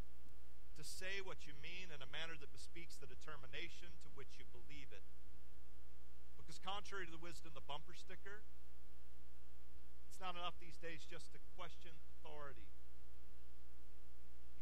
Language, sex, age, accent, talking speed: English, male, 40-59, American, 145 wpm